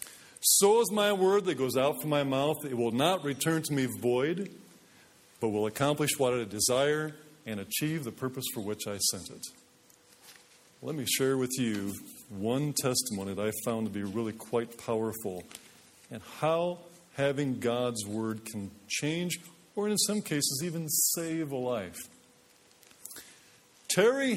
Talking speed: 155 wpm